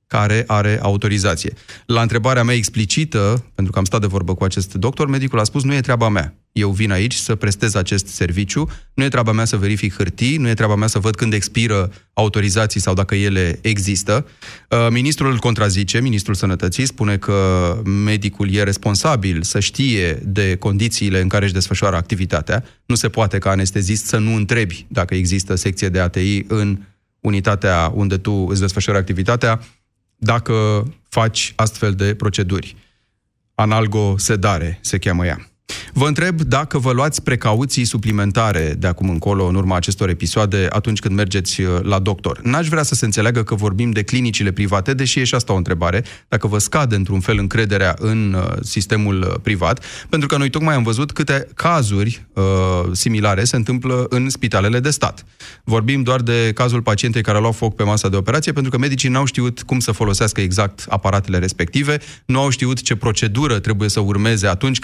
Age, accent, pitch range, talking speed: 30-49, native, 100-120 Hz, 175 wpm